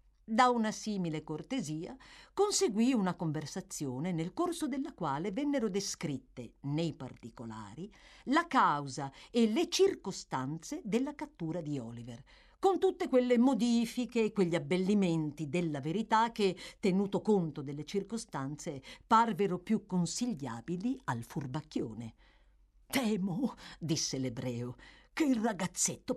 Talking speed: 110 wpm